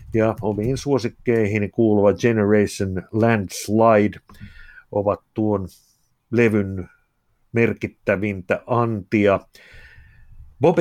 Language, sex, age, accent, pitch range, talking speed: Finnish, male, 60-79, native, 100-120 Hz, 65 wpm